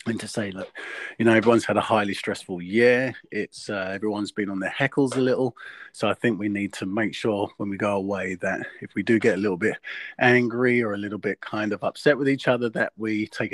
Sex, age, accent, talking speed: male, 30-49, British, 245 wpm